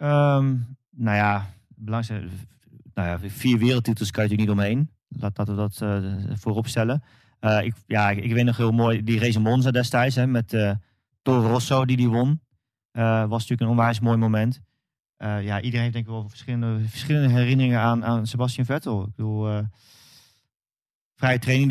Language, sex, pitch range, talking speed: Dutch, male, 110-125 Hz, 180 wpm